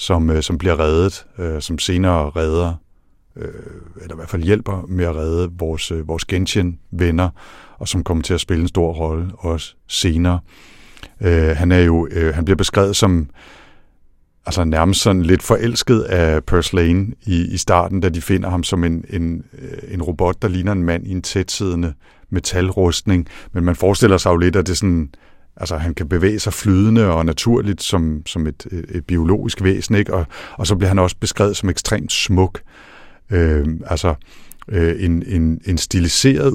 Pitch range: 85-95 Hz